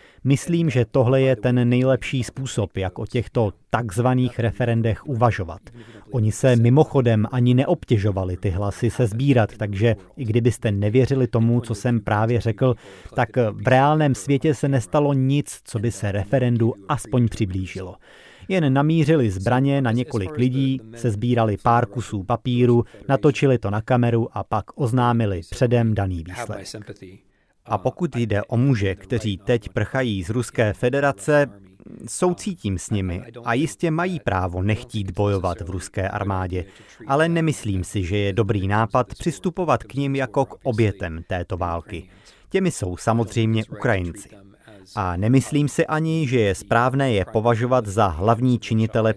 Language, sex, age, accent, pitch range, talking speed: Czech, male, 30-49, native, 100-130 Hz, 145 wpm